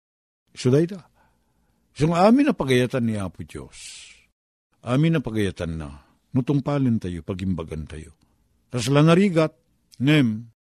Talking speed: 105 wpm